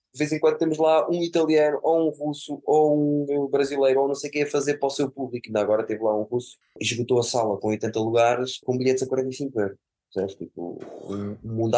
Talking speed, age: 230 wpm, 20-39